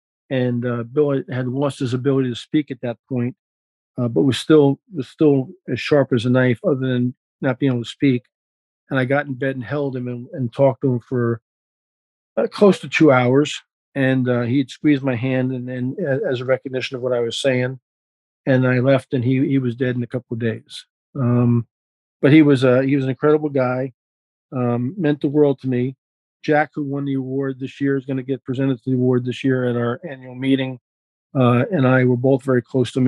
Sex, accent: male, American